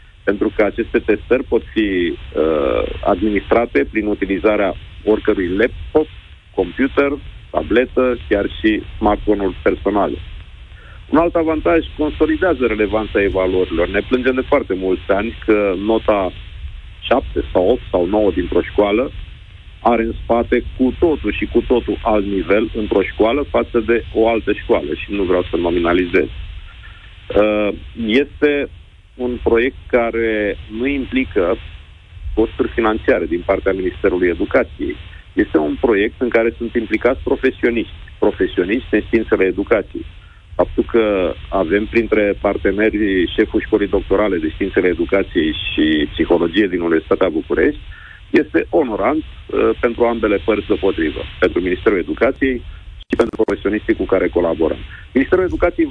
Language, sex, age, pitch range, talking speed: Romanian, male, 40-59, 95-130 Hz, 130 wpm